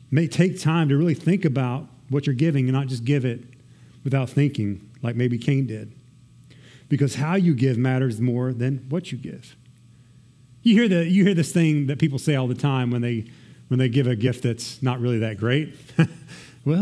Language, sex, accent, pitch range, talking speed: English, male, American, 125-155 Hz, 205 wpm